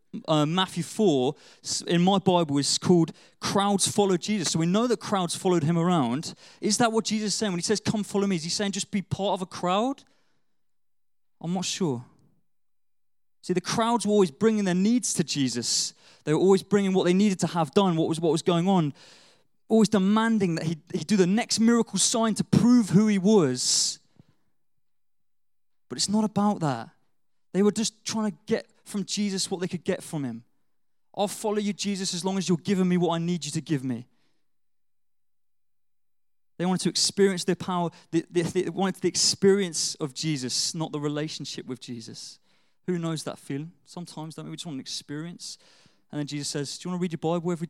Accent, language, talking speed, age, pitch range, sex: British, English, 205 wpm, 20-39, 155-200 Hz, male